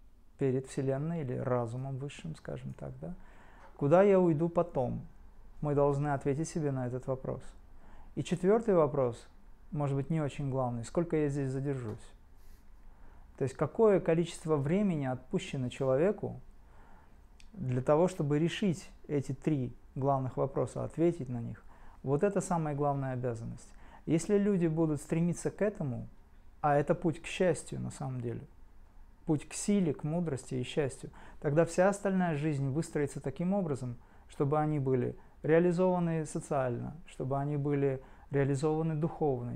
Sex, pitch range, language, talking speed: male, 125-165 Hz, Russian, 140 wpm